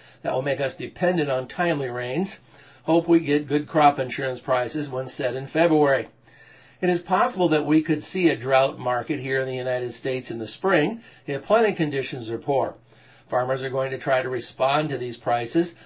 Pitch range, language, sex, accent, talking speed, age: 130-155 Hz, English, male, American, 195 wpm, 60-79